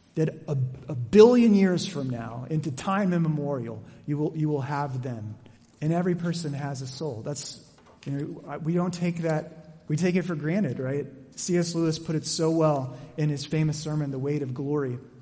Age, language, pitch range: 30-49, English, 145-185 Hz